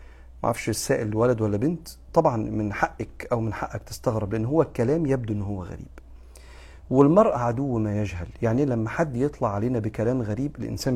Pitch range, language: 100-125 Hz, Arabic